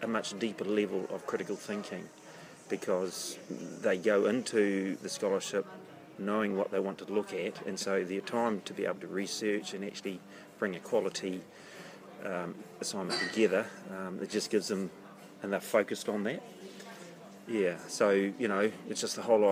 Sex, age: male, 40-59